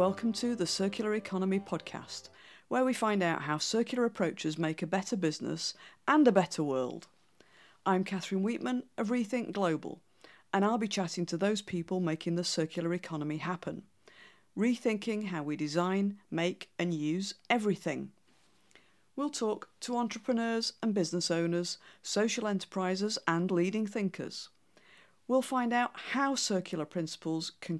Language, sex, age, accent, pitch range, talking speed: English, female, 50-69, British, 160-220 Hz, 140 wpm